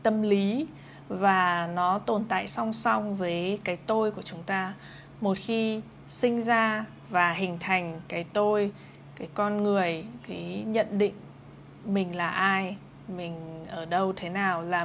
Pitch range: 175-215 Hz